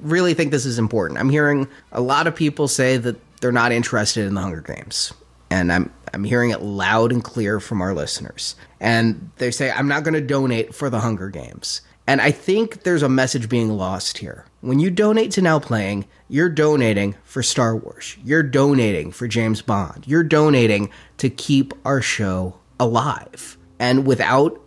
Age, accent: 30-49, American